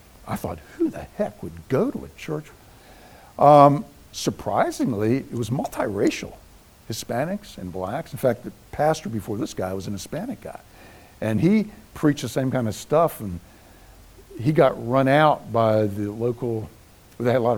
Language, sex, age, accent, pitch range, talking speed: English, male, 60-79, American, 105-150 Hz, 165 wpm